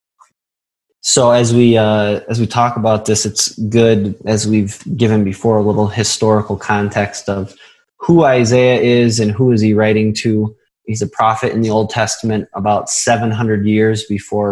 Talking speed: 165 wpm